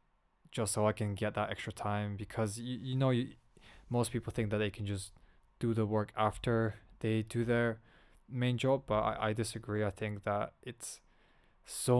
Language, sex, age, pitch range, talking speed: English, male, 20-39, 100-110 Hz, 190 wpm